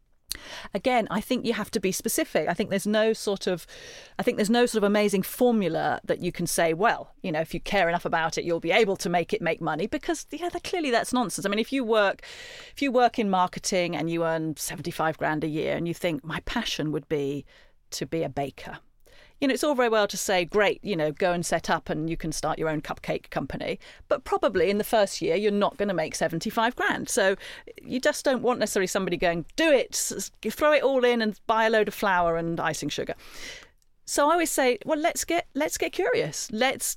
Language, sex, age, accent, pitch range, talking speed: English, female, 40-59, British, 170-240 Hz, 235 wpm